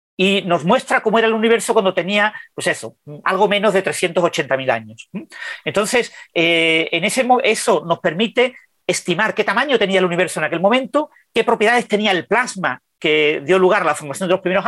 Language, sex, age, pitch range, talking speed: Spanish, male, 40-59, 170-225 Hz, 190 wpm